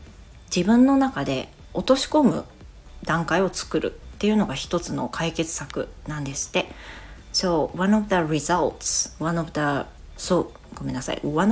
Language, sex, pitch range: Japanese, female, 155-210 Hz